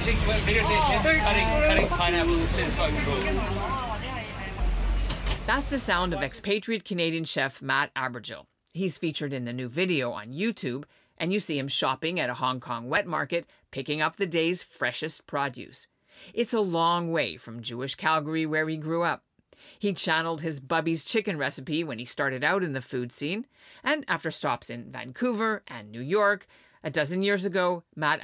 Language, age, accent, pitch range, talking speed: English, 50-69, American, 135-195 Hz, 155 wpm